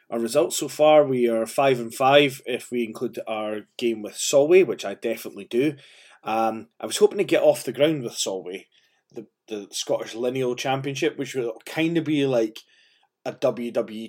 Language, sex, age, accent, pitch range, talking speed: English, male, 20-39, British, 115-145 Hz, 185 wpm